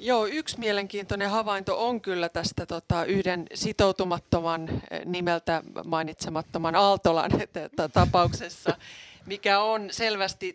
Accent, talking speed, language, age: native, 95 wpm, Finnish, 30-49